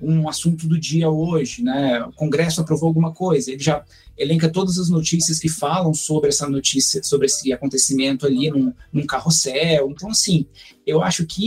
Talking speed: 180 wpm